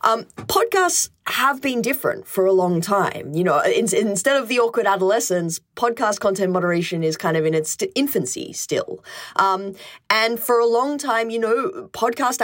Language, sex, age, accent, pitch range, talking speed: English, female, 20-39, Australian, 170-245 Hz, 170 wpm